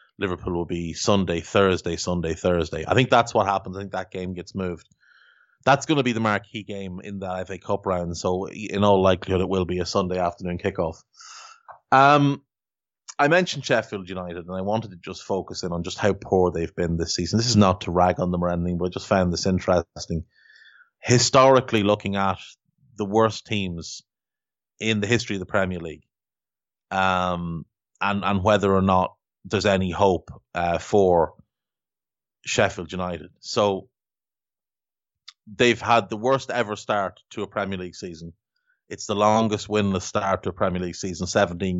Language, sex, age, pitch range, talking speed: English, male, 30-49, 90-110 Hz, 180 wpm